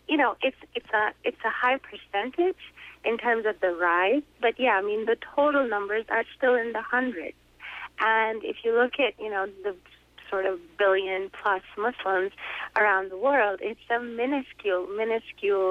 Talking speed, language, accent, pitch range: 175 wpm, English, American, 195-245 Hz